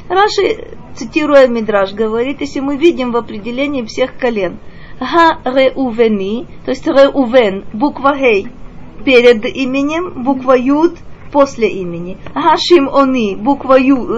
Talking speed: 120 wpm